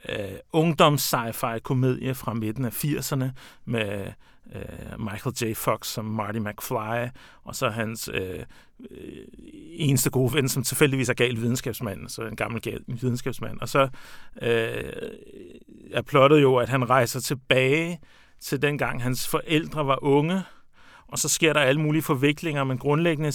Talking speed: 150 wpm